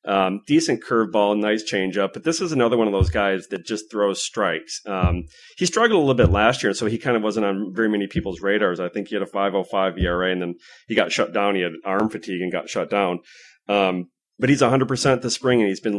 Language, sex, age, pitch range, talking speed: English, male, 30-49, 95-120 Hz, 245 wpm